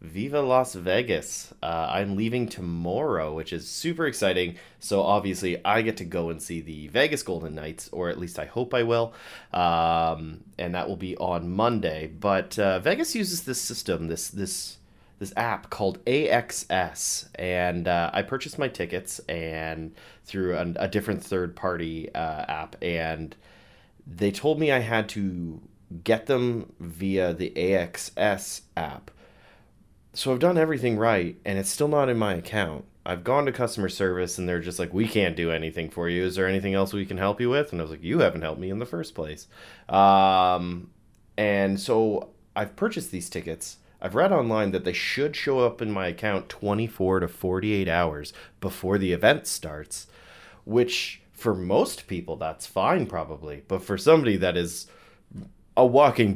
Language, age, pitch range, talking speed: English, 30-49, 85-110 Hz, 175 wpm